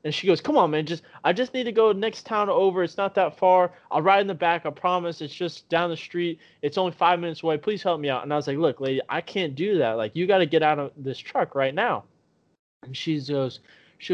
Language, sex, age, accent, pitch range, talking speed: English, male, 20-39, American, 150-205 Hz, 275 wpm